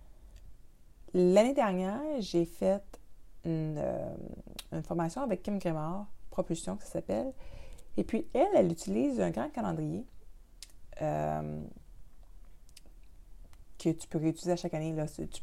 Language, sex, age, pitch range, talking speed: French, female, 30-49, 155-210 Hz, 125 wpm